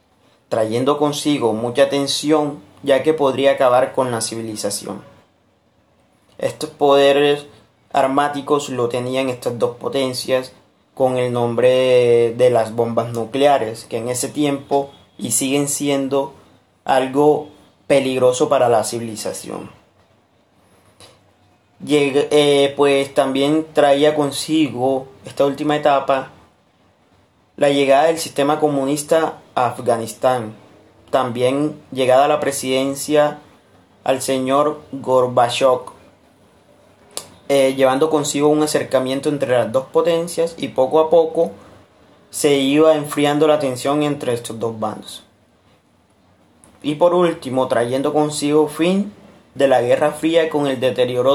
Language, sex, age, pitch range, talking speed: Spanish, male, 30-49, 125-150 Hz, 115 wpm